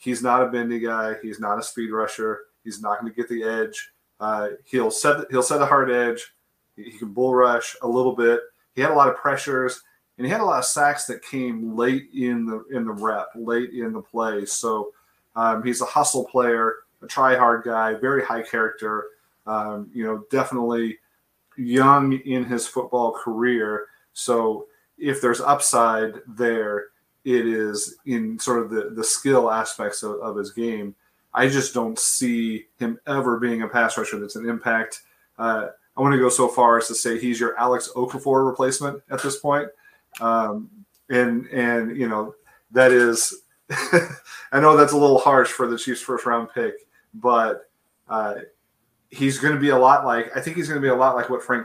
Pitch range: 110-130 Hz